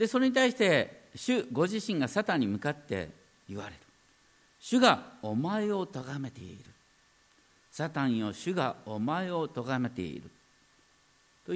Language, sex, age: Japanese, male, 50-69